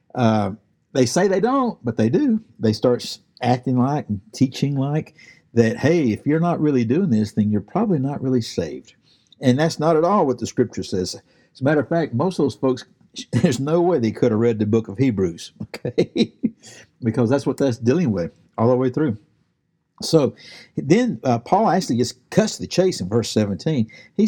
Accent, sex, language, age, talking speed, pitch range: American, male, English, 60-79, 205 wpm, 120-185 Hz